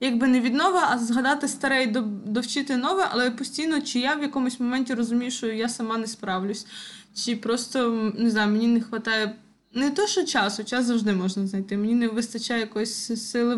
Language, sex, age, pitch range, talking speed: Ukrainian, female, 20-39, 220-270 Hz, 190 wpm